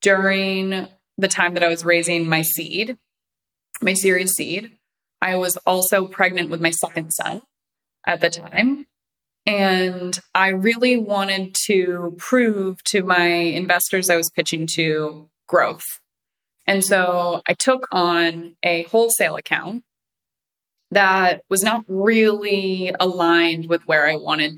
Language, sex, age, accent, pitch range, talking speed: English, female, 20-39, American, 170-195 Hz, 130 wpm